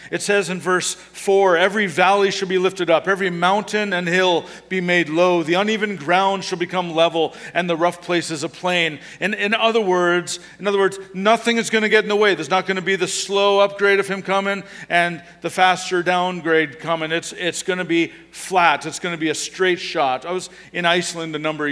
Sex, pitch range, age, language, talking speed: male, 140-180 Hz, 50-69, English, 225 wpm